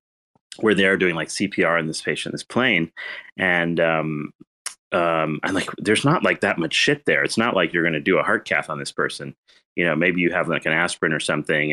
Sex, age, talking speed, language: male, 30-49, 230 wpm, English